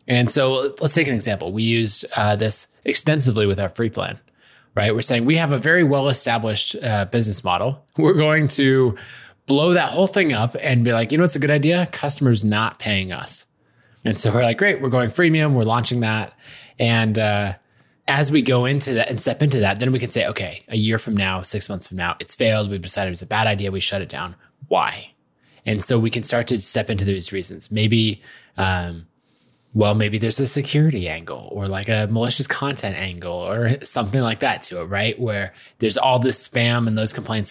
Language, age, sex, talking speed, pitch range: English, 20-39, male, 215 wpm, 100-130 Hz